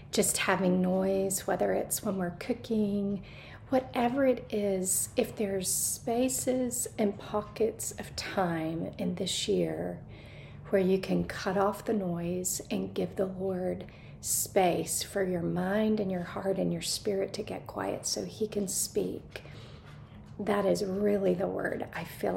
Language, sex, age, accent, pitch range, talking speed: English, female, 40-59, American, 180-220 Hz, 150 wpm